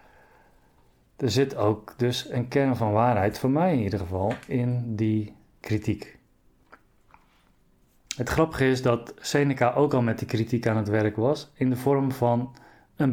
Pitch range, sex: 115-135 Hz, male